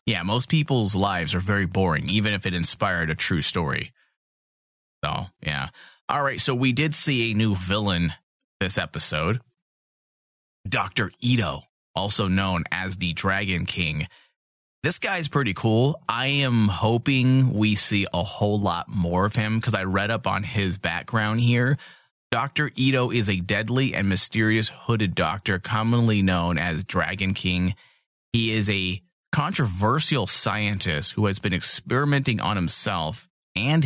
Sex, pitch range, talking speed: male, 90-120 Hz, 150 wpm